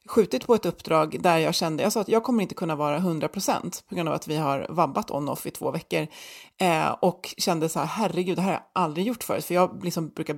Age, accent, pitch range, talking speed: 30-49, native, 165-215 Hz, 255 wpm